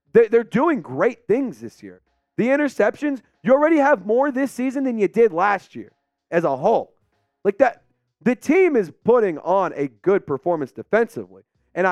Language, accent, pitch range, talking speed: English, American, 125-195 Hz, 170 wpm